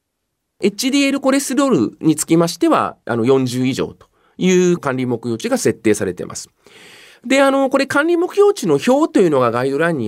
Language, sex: Japanese, male